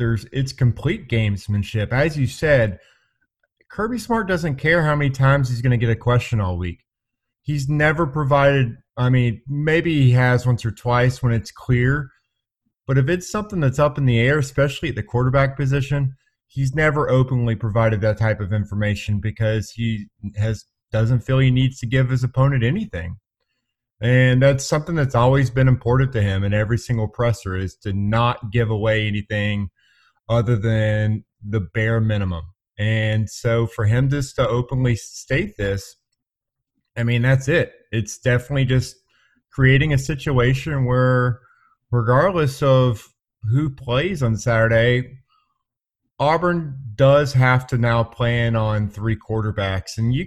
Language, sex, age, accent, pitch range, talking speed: English, male, 30-49, American, 115-140 Hz, 160 wpm